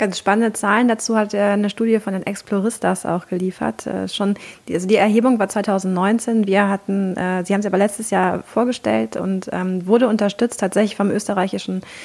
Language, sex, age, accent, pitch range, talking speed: German, female, 20-39, German, 195-225 Hz, 195 wpm